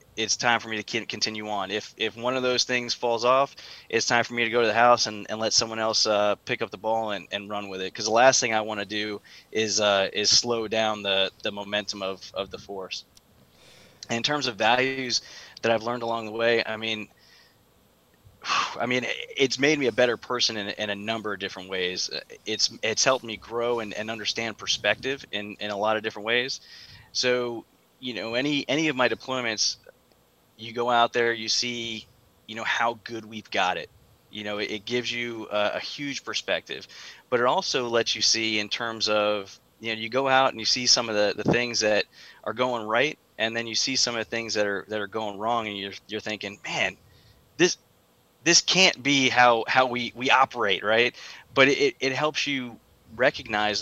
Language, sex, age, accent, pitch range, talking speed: English, male, 20-39, American, 105-125 Hz, 215 wpm